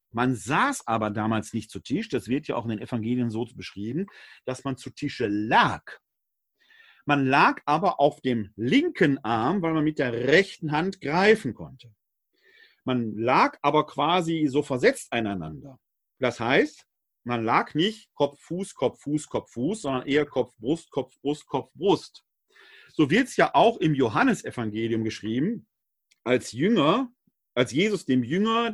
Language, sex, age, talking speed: German, male, 40-59, 160 wpm